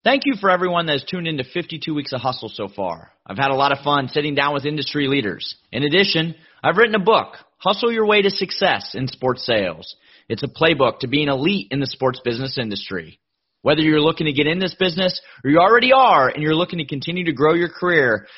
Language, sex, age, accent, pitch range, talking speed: English, male, 30-49, American, 135-175 Hz, 235 wpm